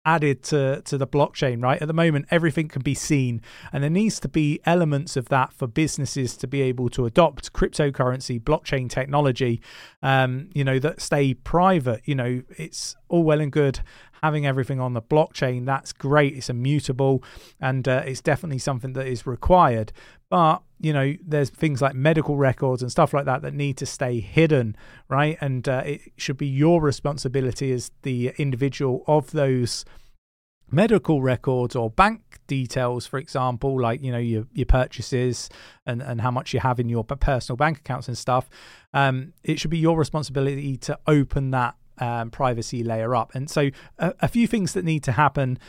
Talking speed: 185 wpm